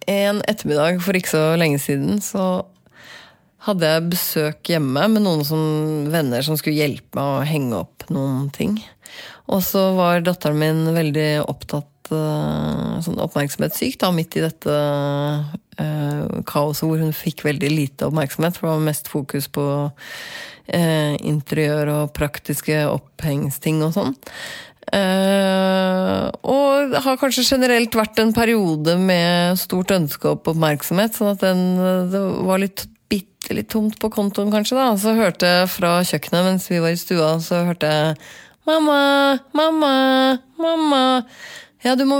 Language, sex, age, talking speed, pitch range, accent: English, female, 30-49, 140 wpm, 155-230 Hz, Swedish